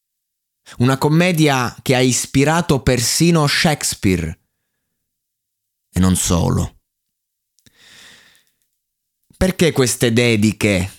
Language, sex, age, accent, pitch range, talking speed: Italian, male, 20-39, native, 105-140 Hz, 70 wpm